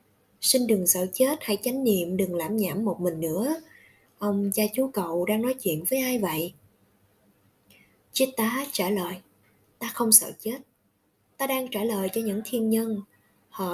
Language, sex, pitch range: Vietnamese, female, 185-240 Hz